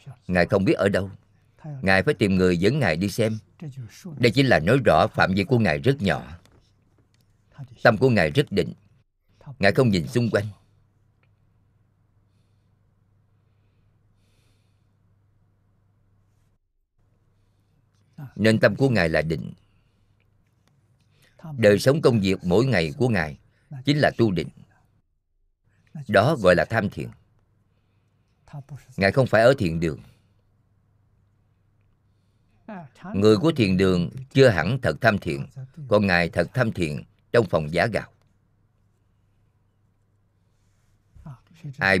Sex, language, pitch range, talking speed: male, Vietnamese, 100-120 Hz, 115 wpm